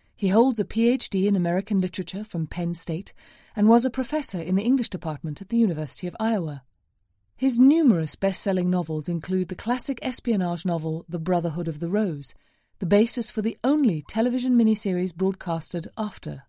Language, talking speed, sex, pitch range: English, 165 wpm, female, 170-235 Hz